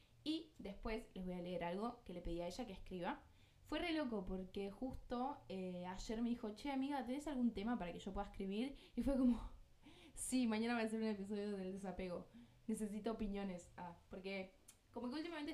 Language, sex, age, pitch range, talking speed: Spanish, female, 10-29, 180-240 Hz, 200 wpm